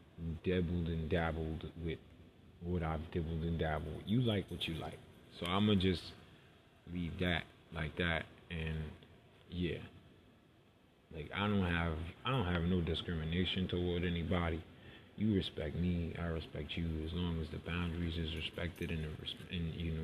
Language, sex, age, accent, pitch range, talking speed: English, male, 20-39, American, 80-100 Hz, 160 wpm